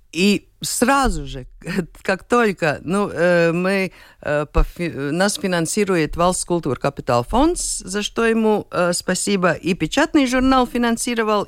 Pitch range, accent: 155-210 Hz, native